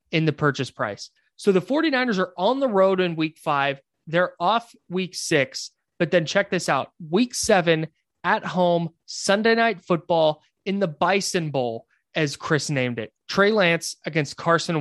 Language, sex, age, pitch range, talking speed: English, male, 20-39, 145-190 Hz, 170 wpm